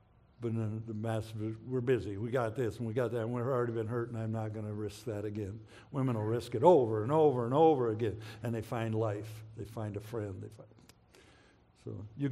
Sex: male